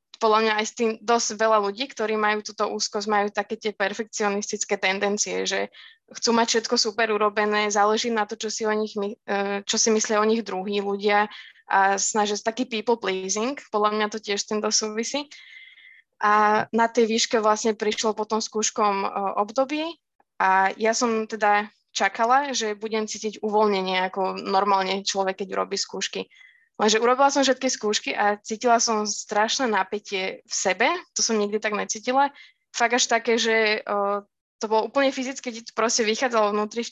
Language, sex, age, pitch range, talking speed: Slovak, female, 20-39, 205-230 Hz, 170 wpm